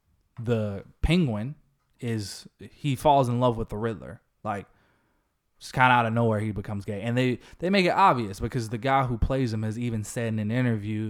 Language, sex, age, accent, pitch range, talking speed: English, male, 20-39, American, 105-125 Hz, 205 wpm